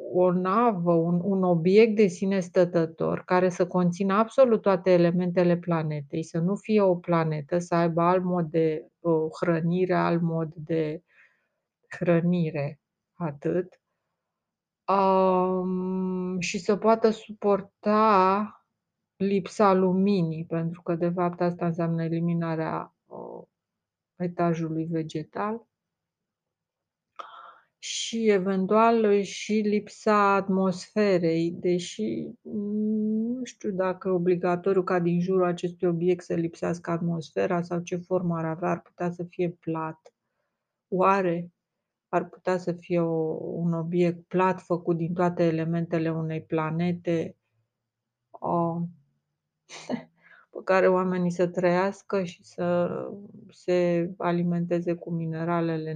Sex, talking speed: female, 105 wpm